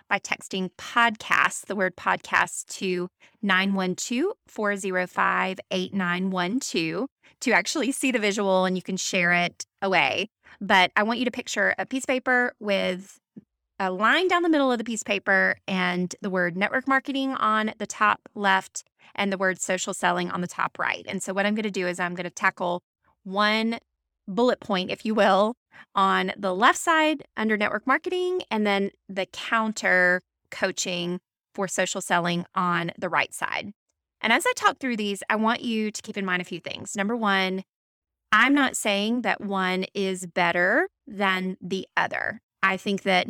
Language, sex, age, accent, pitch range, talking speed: English, female, 20-39, American, 185-230 Hz, 175 wpm